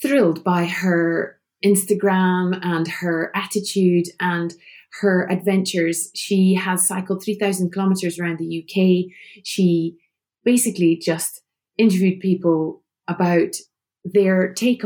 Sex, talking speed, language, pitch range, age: female, 105 wpm, English, 180-210 Hz, 30-49